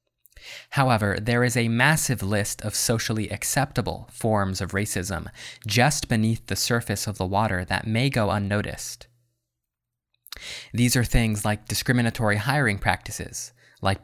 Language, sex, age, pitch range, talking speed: English, male, 20-39, 100-120 Hz, 135 wpm